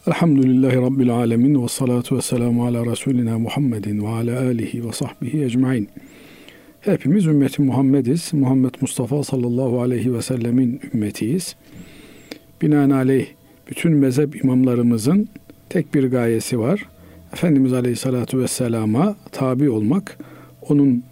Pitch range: 125-145 Hz